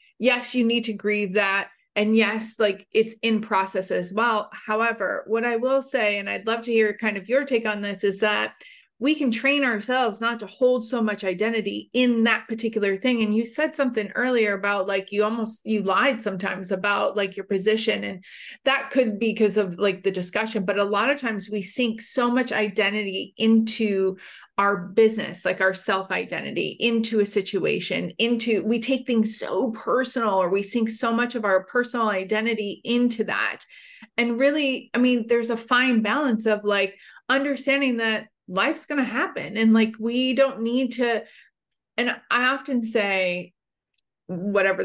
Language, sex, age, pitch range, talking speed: English, female, 30-49, 205-240 Hz, 180 wpm